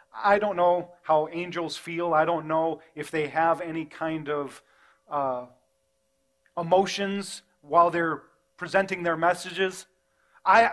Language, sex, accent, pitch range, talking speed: English, male, American, 170-250 Hz, 130 wpm